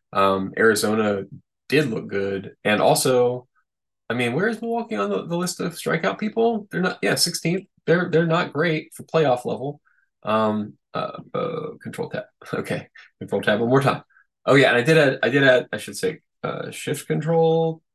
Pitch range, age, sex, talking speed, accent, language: 105-160 Hz, 20-39, male, 185 wpm, American, English